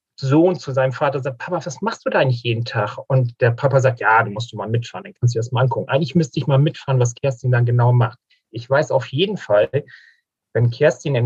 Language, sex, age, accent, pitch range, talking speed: German, male, 40-59, German, 120-150 Hz, 255 wpm